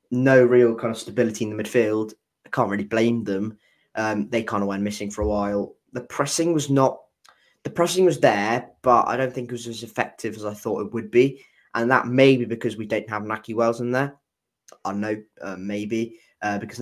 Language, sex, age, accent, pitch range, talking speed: English, male, 10-29, British, 100-120 Hz, 220 wpm